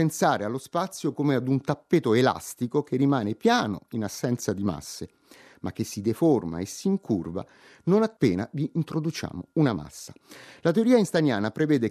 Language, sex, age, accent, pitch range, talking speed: Italian, male, 30-49, native, 115-180 Hz, 160 wpm